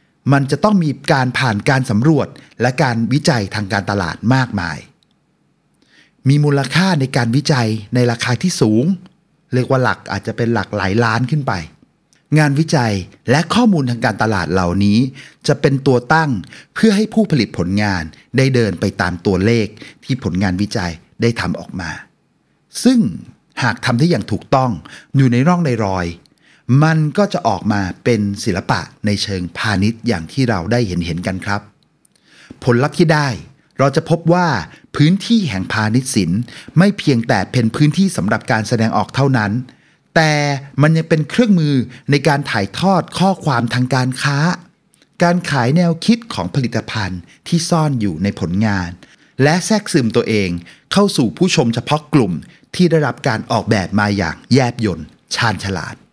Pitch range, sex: 105-155 Hz, male